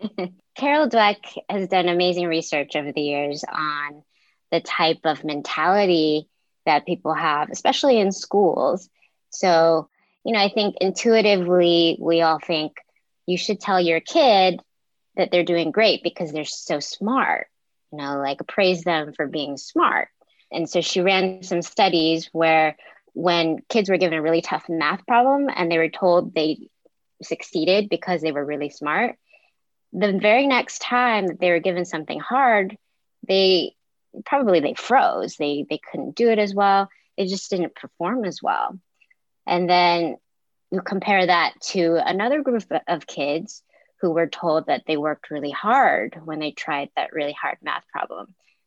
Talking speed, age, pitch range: 160 wpm, 20-39, 160-195 Hz